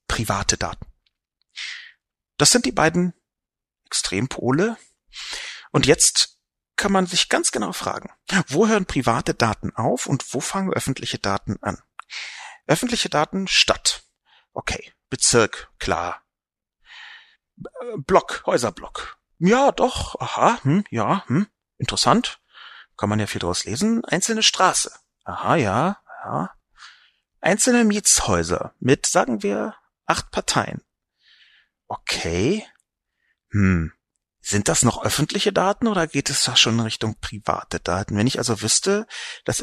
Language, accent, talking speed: German, German, 120 wpm